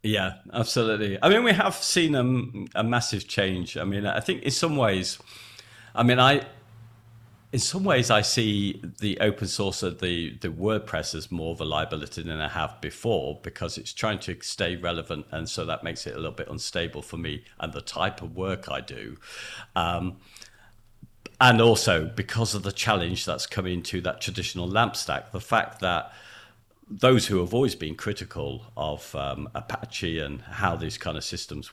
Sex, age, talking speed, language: male, 50-69, 185 wpm, English